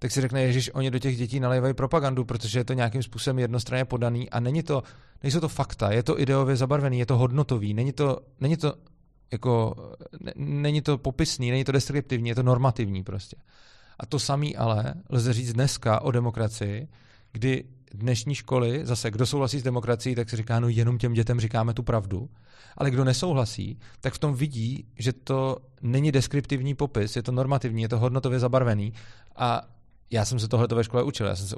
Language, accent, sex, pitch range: Czech, native, male, 115-130 Hz